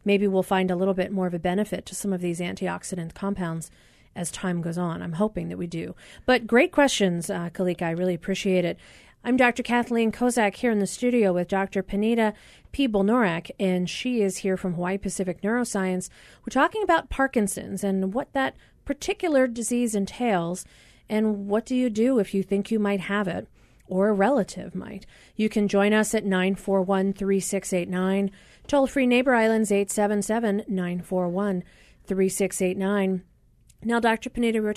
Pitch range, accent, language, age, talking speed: 180-220 Hz, American, English, 40-59, 175 wpm